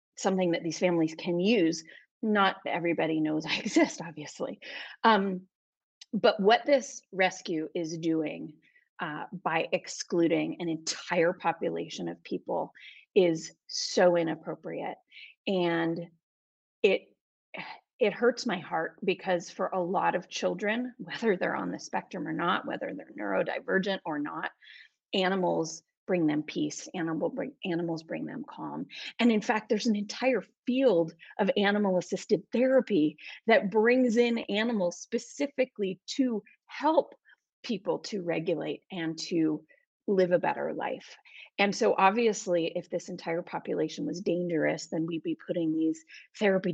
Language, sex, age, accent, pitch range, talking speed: English, female, 30-49, American, 165-235 Hz, 135 wpm